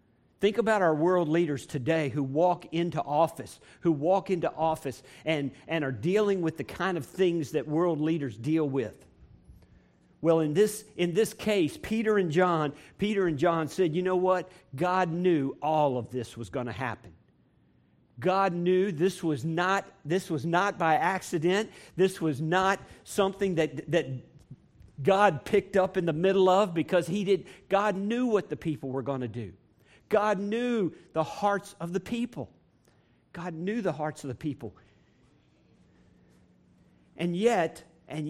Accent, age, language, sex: American, 50-69, English, male